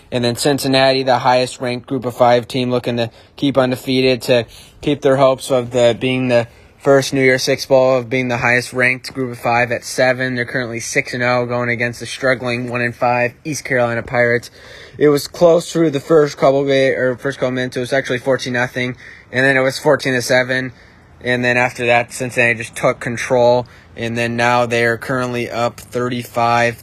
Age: 20-39